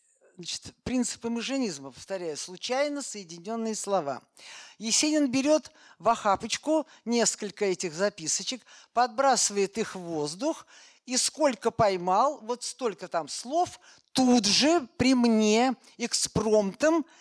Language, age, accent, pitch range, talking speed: Russian, 50-69, native, 185-255 Hz, 100 wpm